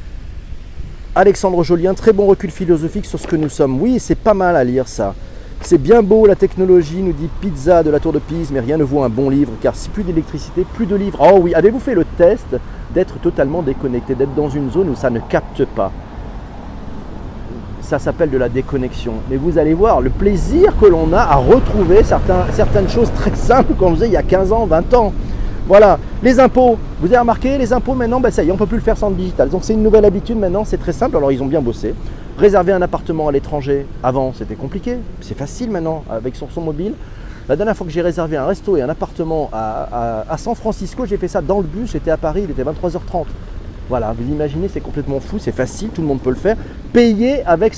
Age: 40-59